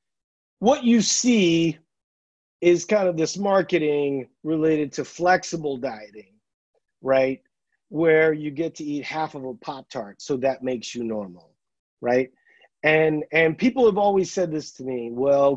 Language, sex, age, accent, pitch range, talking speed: English, male, 40-59, American, 140-190 Hz, 145 wpm